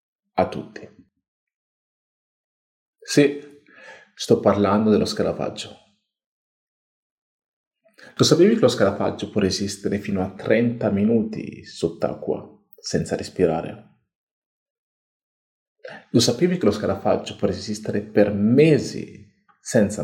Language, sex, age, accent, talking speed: Italian, male, 40-59, native, 95 wpm